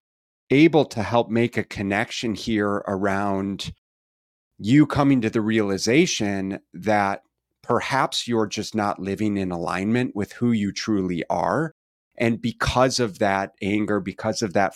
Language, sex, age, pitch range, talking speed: English, male, 30-49, 95-115 Hz, 140 wpm